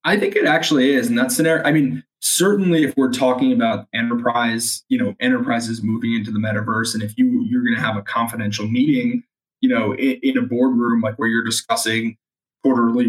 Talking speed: 200 wpm